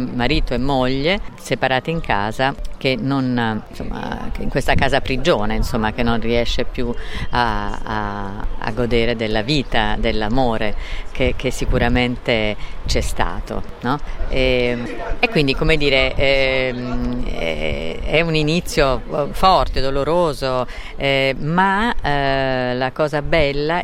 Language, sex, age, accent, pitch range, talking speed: Italian, female, 50-69, native, 115-145 Hz, 125 wpm